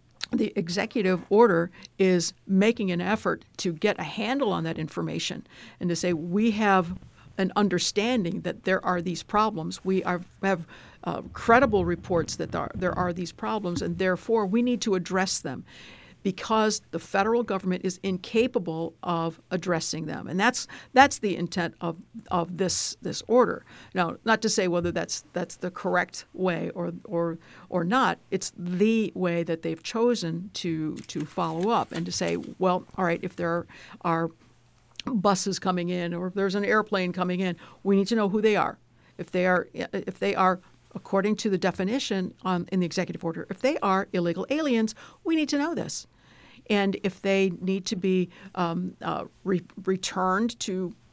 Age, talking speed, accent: 50-69, 175 wpm, American